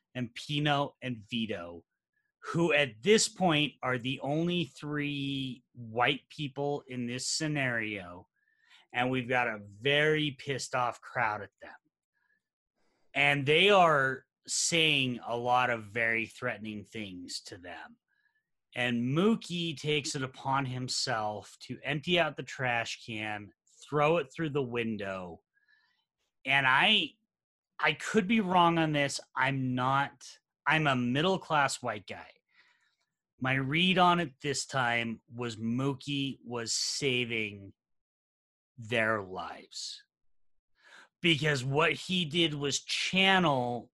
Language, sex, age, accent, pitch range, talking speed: English, male, 30-49, American, 120-160 Hz, 120 wpm